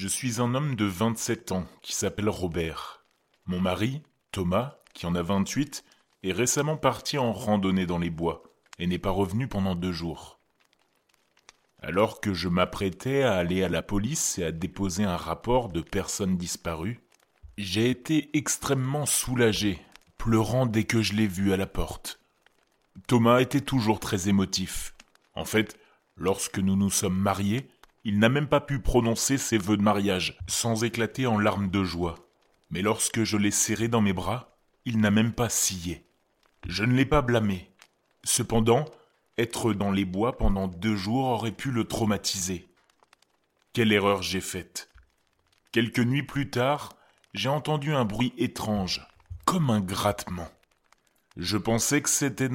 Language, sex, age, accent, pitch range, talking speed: French, male, 30-49, French, 95-120 Hz, 160 wpm